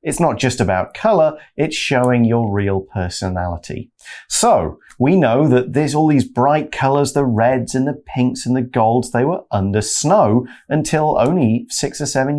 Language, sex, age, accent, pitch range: Chinese, male, 40-59, British, 105-150 Hz